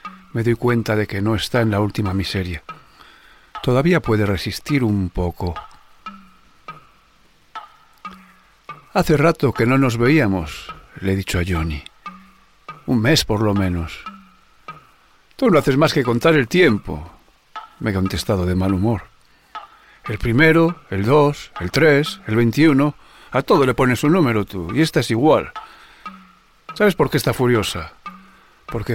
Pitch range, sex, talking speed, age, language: 100-160 Hz, male, 145 wpm, 50-69, Spanish